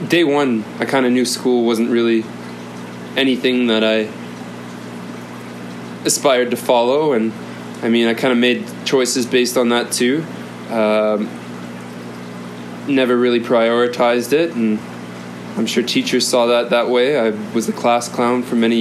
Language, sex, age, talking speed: English, male, 20-39, 150 wpm